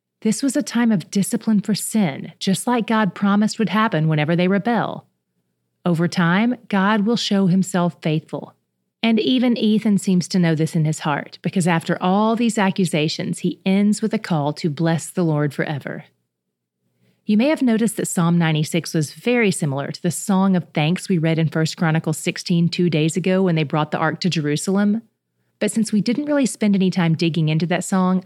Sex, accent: female, American